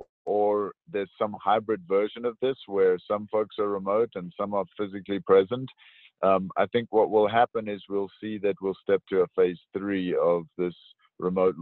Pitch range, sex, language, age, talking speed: 90-105 Hz, male, English, 50-69, 185 wpm